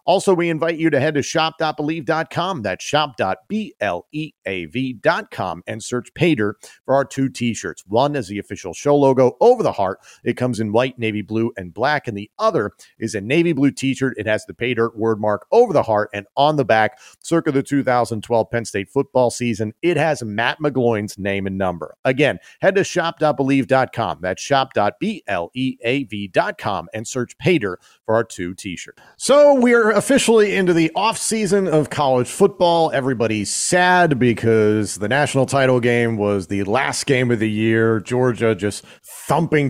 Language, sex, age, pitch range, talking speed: English, male, 40-59, 105-145 Hz, 160 wpm